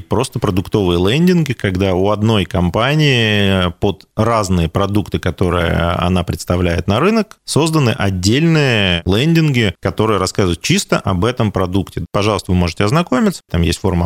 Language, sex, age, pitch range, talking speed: Russian, male, 30-49, 90-115 Hz, 130 wpm